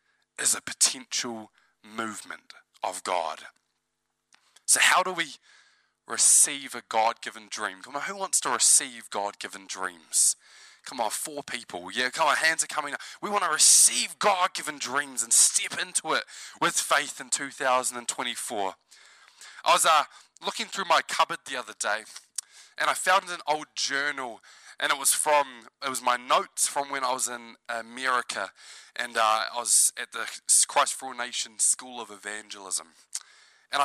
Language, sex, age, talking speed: English, male, 20-39, 160 wpm